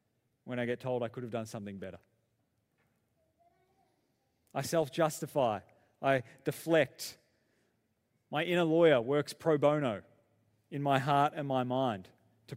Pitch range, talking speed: 125-185 Hz, 130 wpm